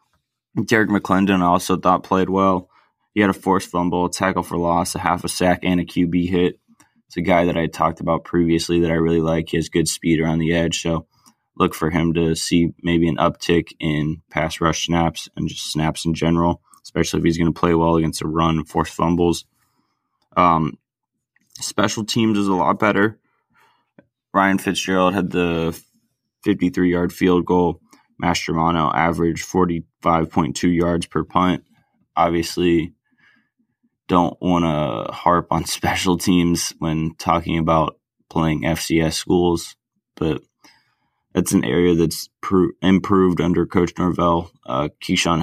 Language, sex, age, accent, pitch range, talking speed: English, male, 20-39, American, 80-90 Hz, 160 wpm